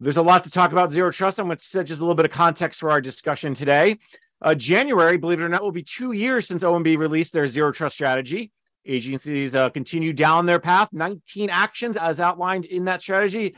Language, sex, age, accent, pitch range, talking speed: English, male, 40-59, American, 140-185 Hz, 230 wpm